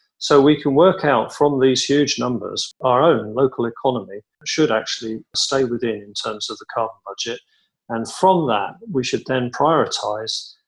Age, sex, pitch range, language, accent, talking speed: 40-59, male, 115-140 Hz, English, British, 170 wpm